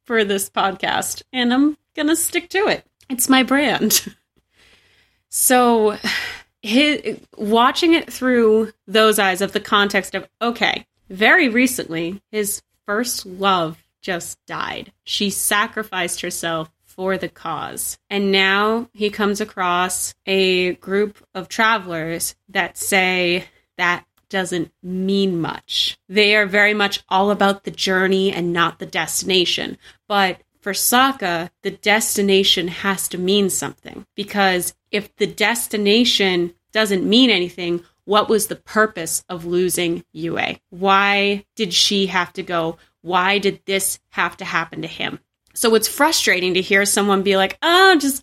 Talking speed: 140 wpm